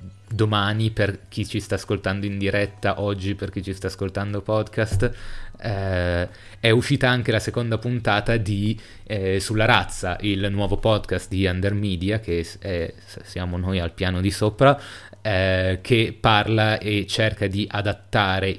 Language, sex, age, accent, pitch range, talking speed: Italian, male, 30-49, native, 95-110 Hz, 150 wpm